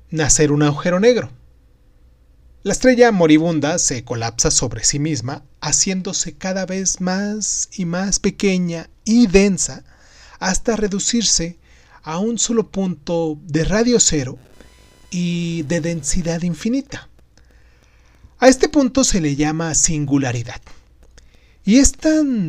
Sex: male